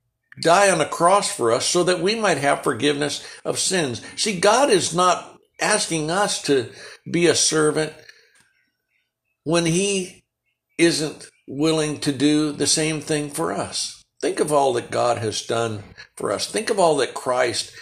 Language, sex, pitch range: English, male, 125-175 Hz